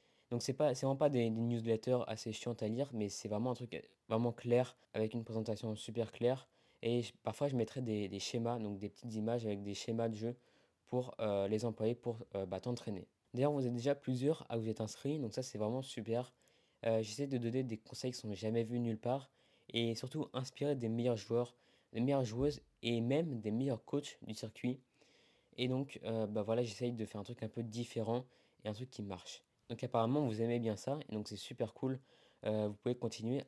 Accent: French